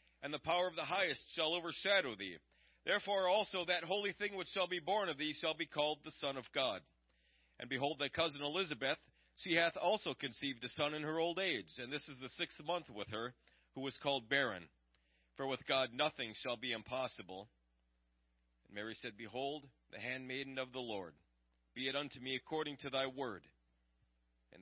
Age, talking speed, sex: 40-59, 195 wpm, male